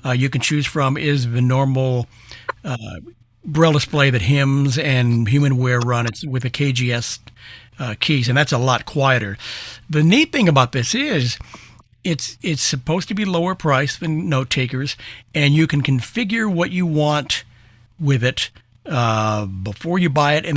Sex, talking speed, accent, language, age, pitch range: male, 170 wpm, American, English, 60-79, 120-145 Hz